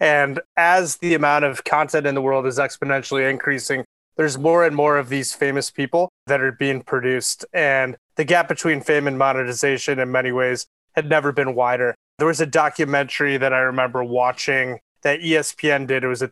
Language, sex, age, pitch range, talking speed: English, male, 20-39, 135-155 Hz, 190 wpm